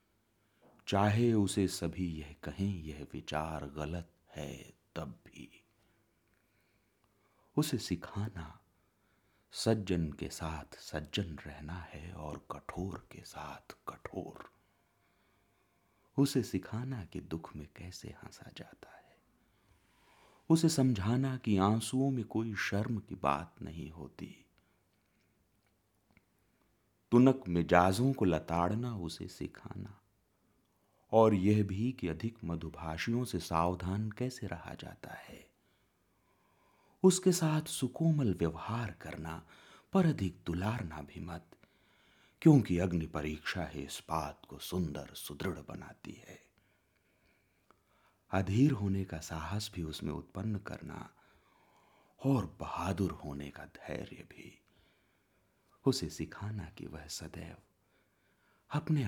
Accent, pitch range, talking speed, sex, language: native, 85-110 Hz, 105 wpm, male, Hindi